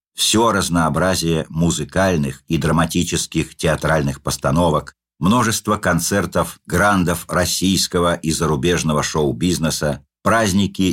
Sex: male